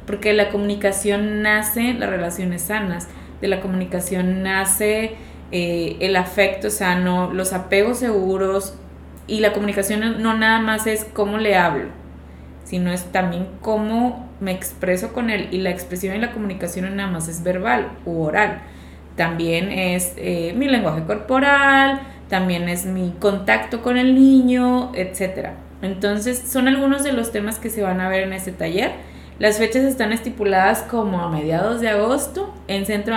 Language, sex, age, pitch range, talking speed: Spanish, female, 20-39, 180-215 Hz, 155 wpm